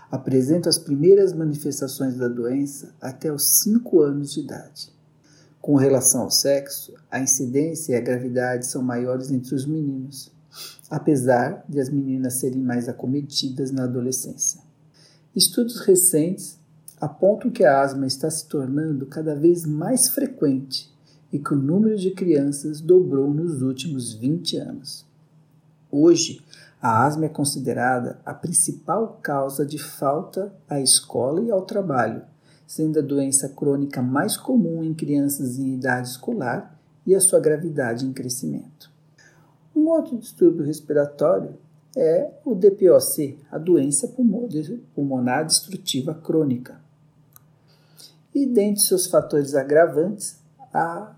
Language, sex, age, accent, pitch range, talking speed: Portuguese, male, 50-69, Brazilian, 135-165 Hz, 130 wpm